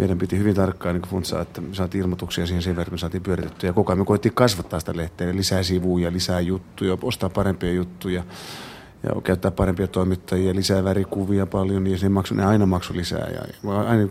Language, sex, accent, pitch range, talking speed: Finnish, male, native, 90-105 Hz, 185 wpm